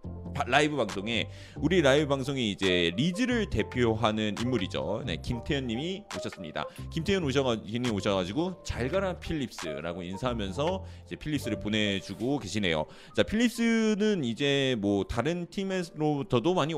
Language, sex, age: Korean, male, 30-49